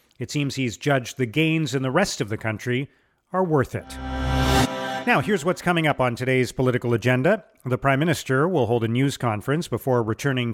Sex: male